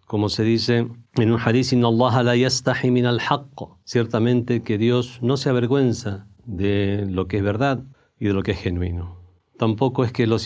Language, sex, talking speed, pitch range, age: Spanish, male, 165 wpm, 105-130 Hz, 50-69